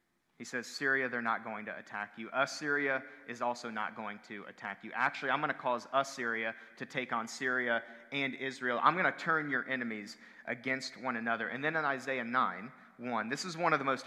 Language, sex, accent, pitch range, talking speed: English, male, American, 120-150 Hz, 215 wpm